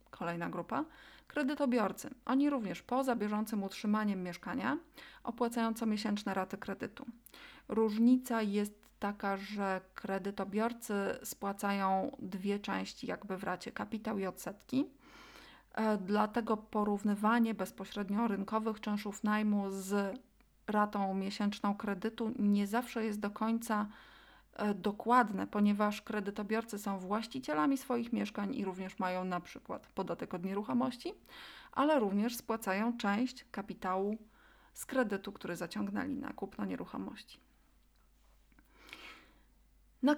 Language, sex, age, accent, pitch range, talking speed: Polish, female, 30-49, native, 200-235 Hz, 105 wpm